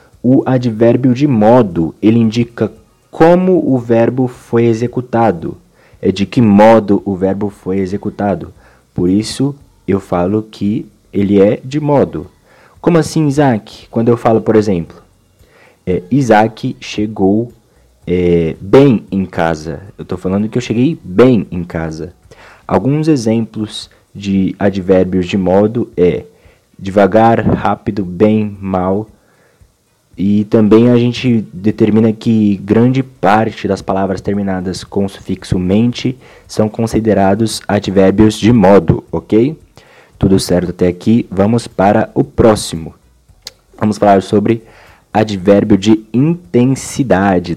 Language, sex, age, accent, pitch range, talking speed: Portuguese, male, 20-39, Brazilian, 95-120 Hz, 120 wpm